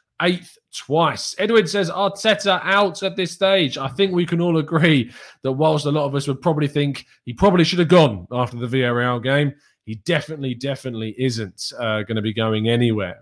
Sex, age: male, 20-39